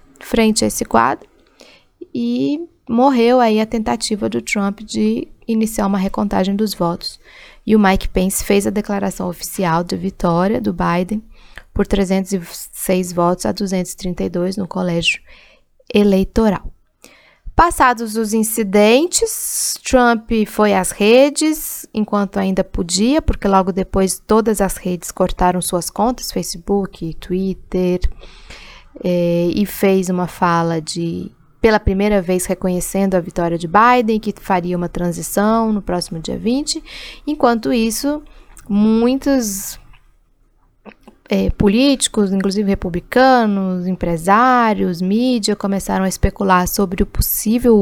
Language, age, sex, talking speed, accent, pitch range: Portuguese, 20-39, female, 120 wpm, Brazilian, 185-225 Hz